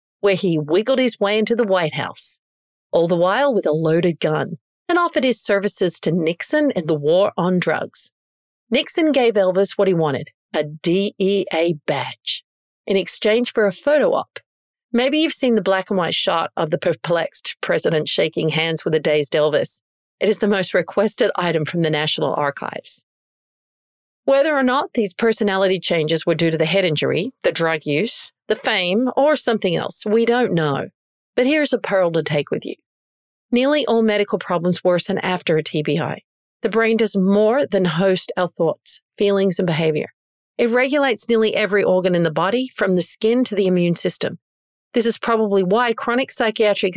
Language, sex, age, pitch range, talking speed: English, female, 50-69, 175-235 Hz, 180 wpm